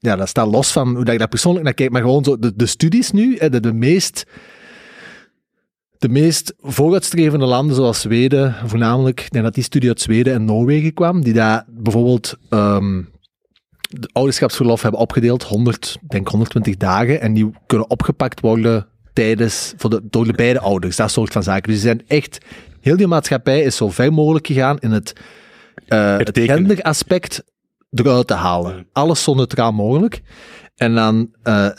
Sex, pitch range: male, 110-145 Hz